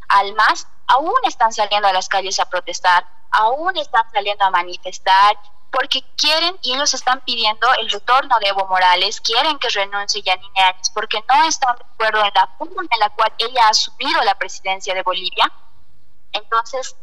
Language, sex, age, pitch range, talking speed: Spanish, female, 20-39, 200-260 Hz, 175 wpm